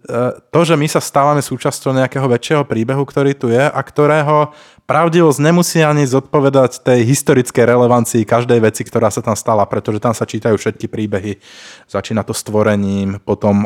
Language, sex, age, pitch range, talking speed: Slovak, male, 20-39, 105-120 Hz, 165 wpm